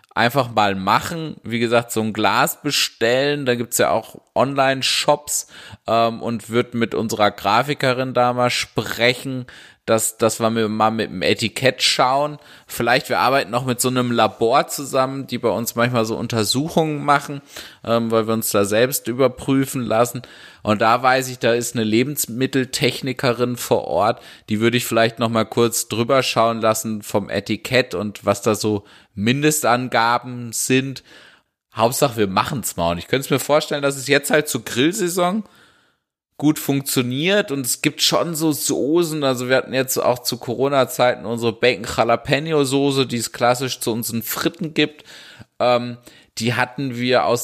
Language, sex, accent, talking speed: German, male, German, 165 wpm